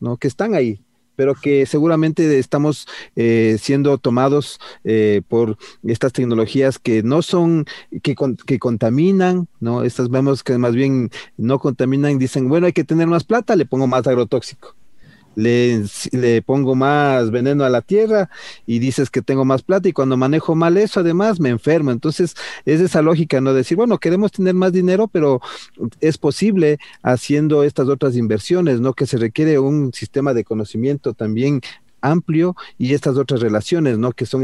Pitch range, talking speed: 120-145 Hz, 170 wpm